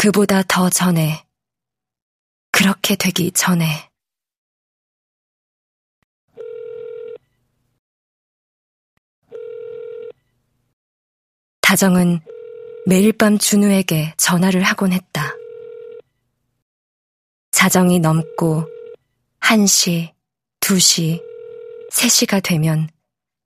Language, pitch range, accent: Korean, 170-215 Hz, native